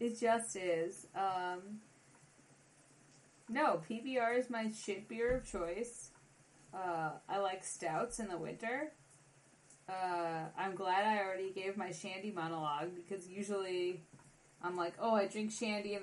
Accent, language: American, English